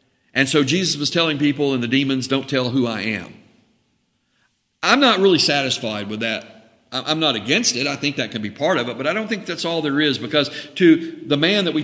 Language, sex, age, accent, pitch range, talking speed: English, male, 50-69, American, 130-210 Hz, 235 wpm